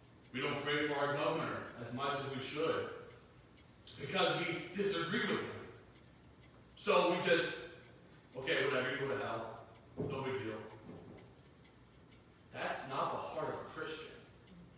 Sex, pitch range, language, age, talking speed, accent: male, 145-205 Hz, English, 40-59, 140 wpm, American